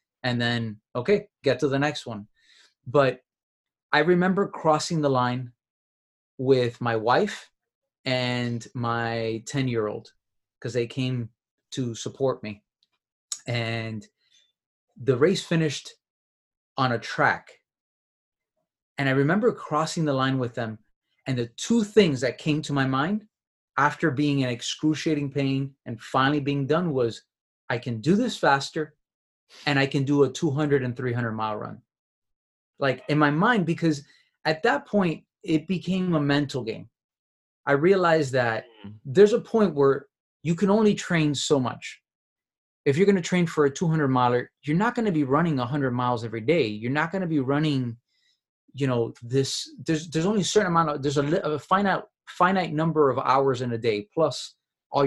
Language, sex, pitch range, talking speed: English, male, 125-165 Hz, 165 wpm